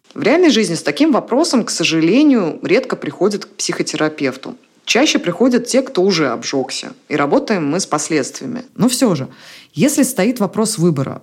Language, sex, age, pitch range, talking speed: Russian, female, 20-39, 150-220 Hz, 160 wpm